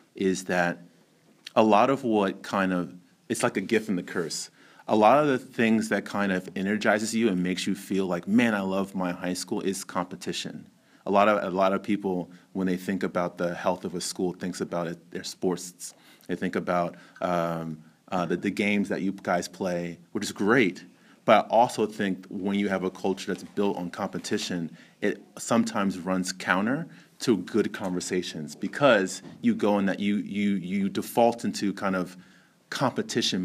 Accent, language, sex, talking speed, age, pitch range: American, English, male, 185 wpm, 30-49, 90-105 Hz